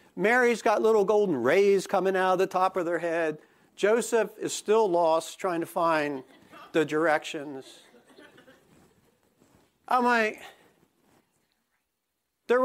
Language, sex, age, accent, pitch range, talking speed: English, male, 50-69, American, 185-235 Hz, 120 wpm